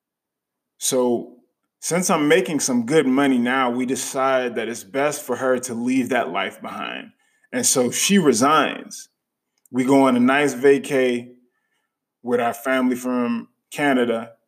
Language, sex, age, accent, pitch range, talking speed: English, male, 20-39, American, 125-200 Hz, 145 wpm